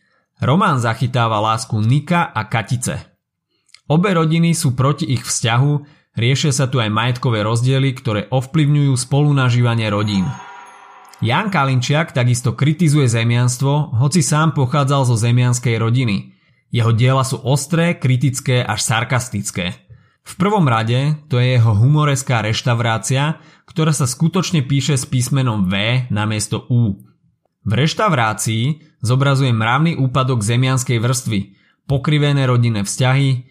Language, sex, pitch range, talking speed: Slovak, male, 115-145 Hz, 120 wpm